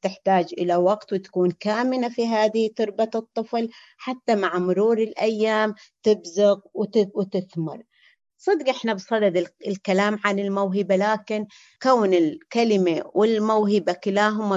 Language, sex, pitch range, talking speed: Arabic, female, 195-220 Hz, 105 wpm